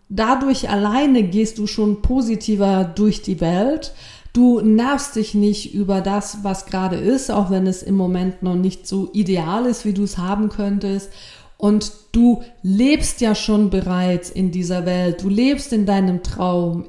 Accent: German